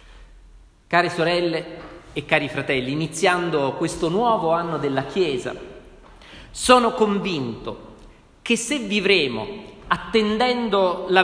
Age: 40-59